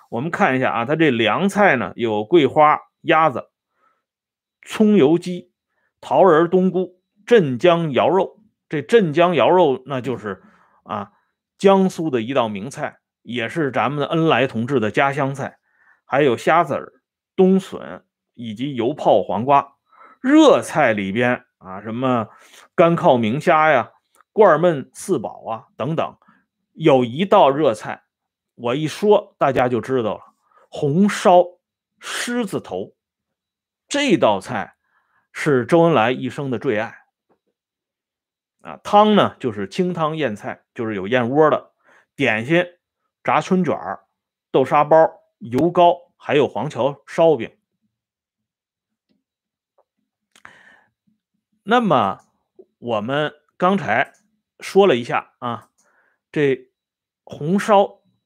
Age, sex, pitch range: 30-49, male, 135-200 Hz